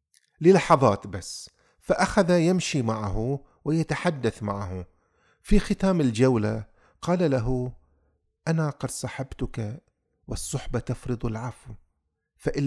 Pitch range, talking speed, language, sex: 110-140 Hz, 90 wpm, Arabic, male